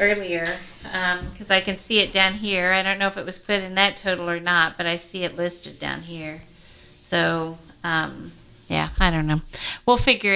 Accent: American